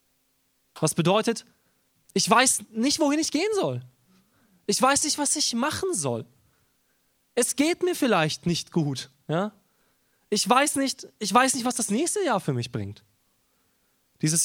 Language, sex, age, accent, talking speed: German, male, 20-39, German, 140 wpm